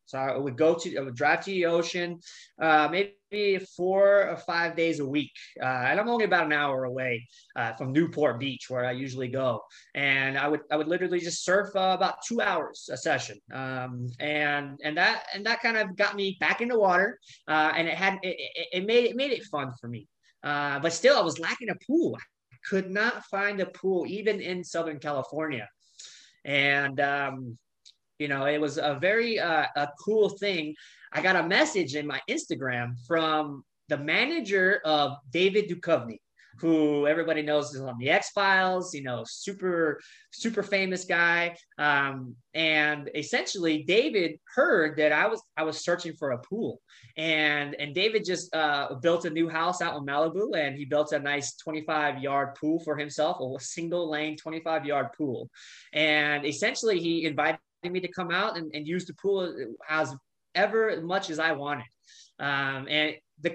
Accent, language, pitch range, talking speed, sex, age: American, English, 145-185 Hz, 185 wpm, male, 20-39